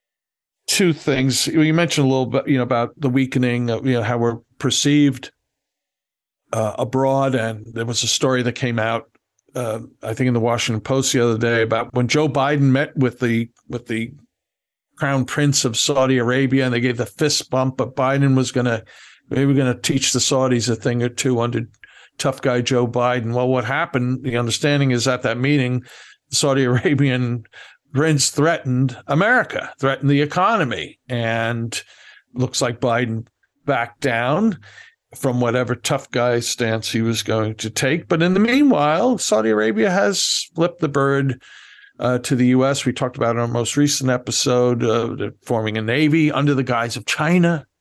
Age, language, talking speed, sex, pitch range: 50-69, English, 180 wpm, male, 120-140 Hz